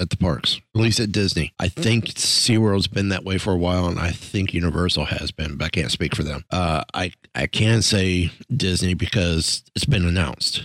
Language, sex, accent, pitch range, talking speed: English, male, American, 90-110 Hz, 215 wpm